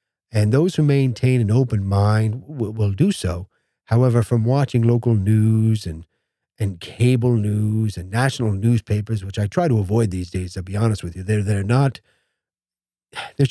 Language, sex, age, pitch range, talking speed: English, male, 40-59, 100-120 Hz, 180 wpm